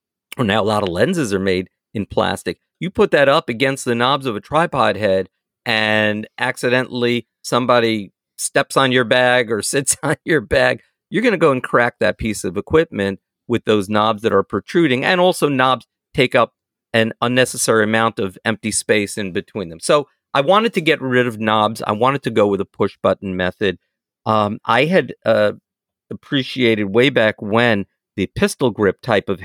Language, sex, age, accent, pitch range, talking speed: English, male, 50-69, American, 105-135 Hz, 185 wpm